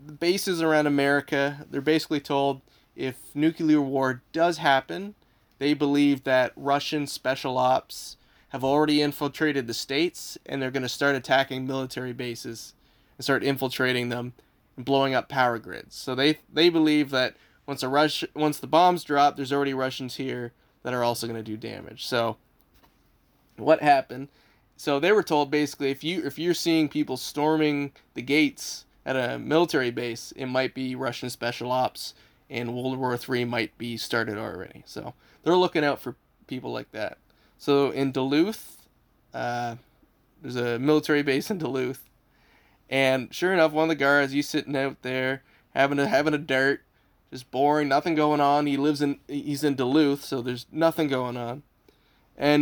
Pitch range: 125-150 Hz